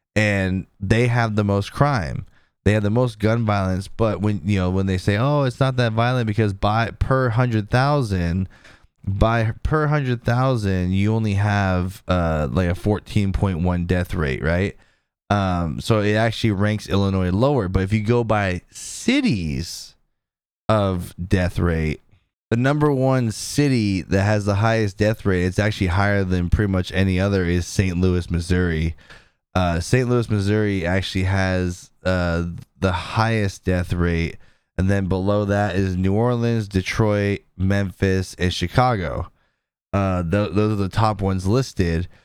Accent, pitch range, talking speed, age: American, 95-115 Hz, 155 wpm, 20-39